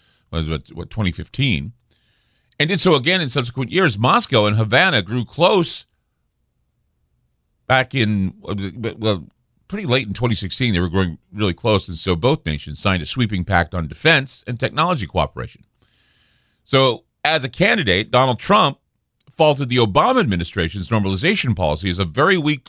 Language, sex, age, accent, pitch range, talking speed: English, male, 50-69, American, 90-130 Hz, 150 wpm